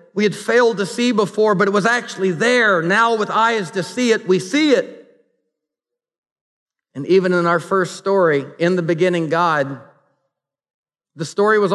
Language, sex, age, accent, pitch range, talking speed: English, male, 50-69, American, 170-215 Hz, 170 wpm